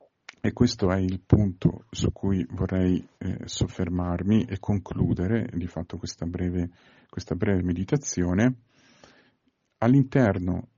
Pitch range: 90-115 Hz